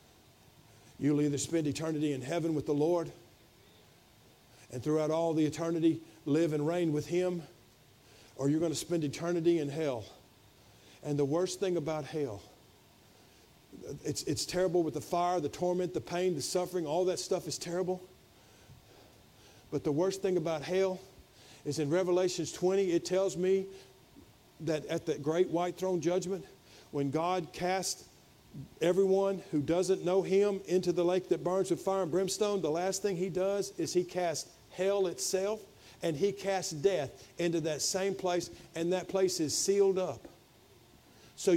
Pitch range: 150-190 Hz